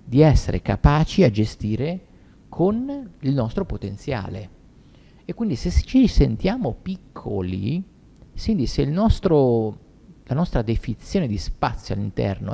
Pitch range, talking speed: 100-140 Hz, 120 wpm